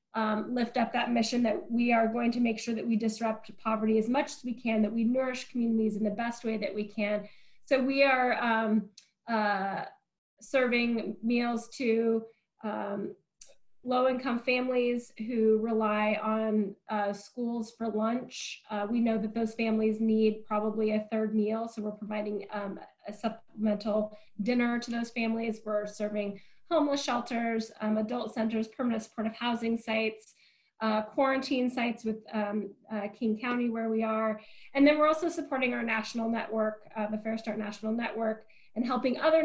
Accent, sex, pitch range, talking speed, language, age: American, female, 215-240 Hz, 165 wpm, English, 20-39